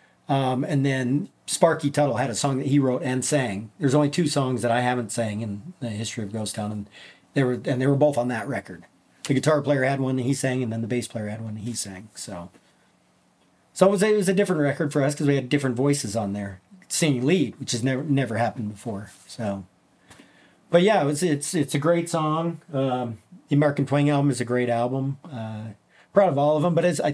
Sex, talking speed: male, 240 wpm